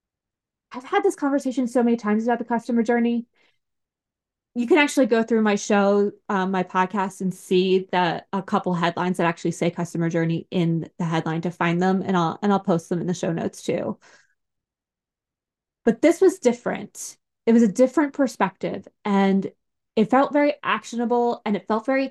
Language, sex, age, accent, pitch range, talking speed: English, female, 20-39, American, 180-230 Hz, 180 wpm